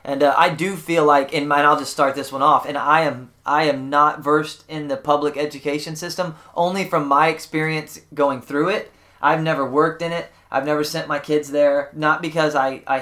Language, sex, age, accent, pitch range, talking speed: English, male, 20-39, American, 130-155 Hz, 225 wpm